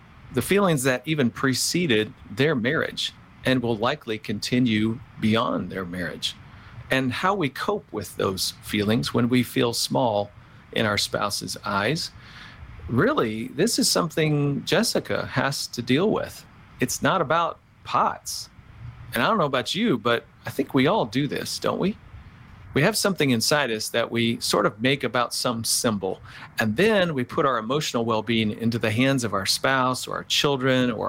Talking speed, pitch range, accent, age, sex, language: 170 wpm, 110-130 Hz, American, 40-59, male, English